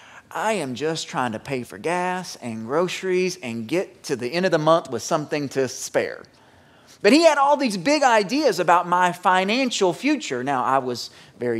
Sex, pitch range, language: male, 160-245 Hz, English